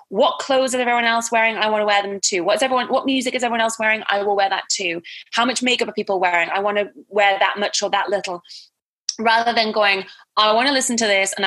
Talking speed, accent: 255 wpm, British